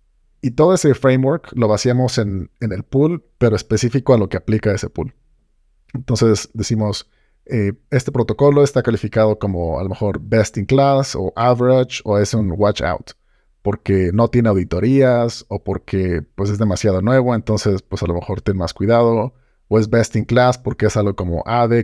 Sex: male